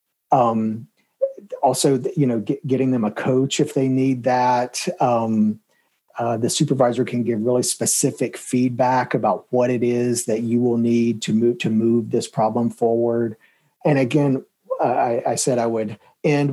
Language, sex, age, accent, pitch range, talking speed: English, male, 40-59, American, 115-135 Hz, 165 wpm